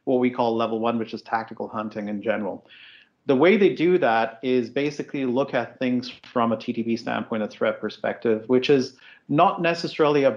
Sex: male